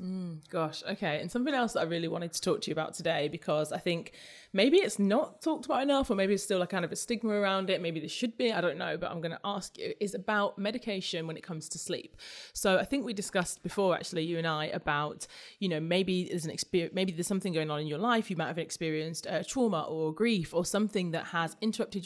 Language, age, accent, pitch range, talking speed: English, 20-39, British, 165-205 Hz, 255 wpm